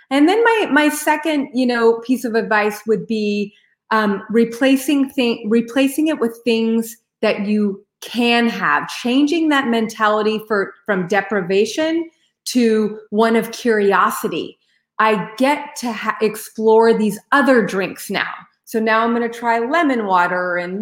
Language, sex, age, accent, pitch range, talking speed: English, female, 30-49, American, 210-255 Hz, 145 wpm